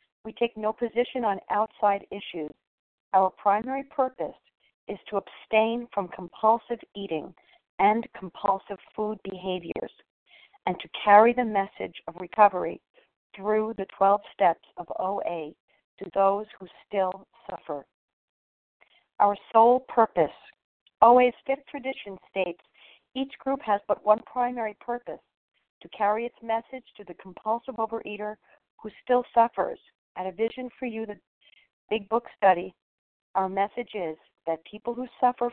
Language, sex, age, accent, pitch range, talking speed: English, female, 50-69, American, 195-240 Hz, 135 wpm